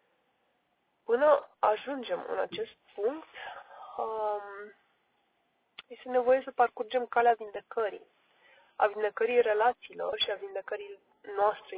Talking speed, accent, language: 90 wpm, native, Romanian